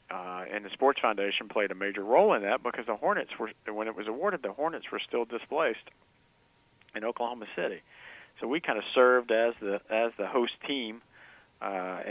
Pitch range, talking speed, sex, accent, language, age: 100-120 Hz, 195 wpm, male, American, English, 40-59